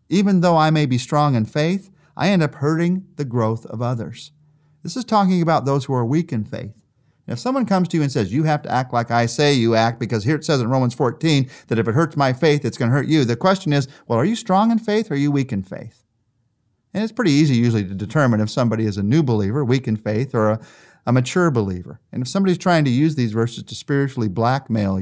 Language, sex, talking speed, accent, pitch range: English, male, 255 wpm, American, 115-155 Hz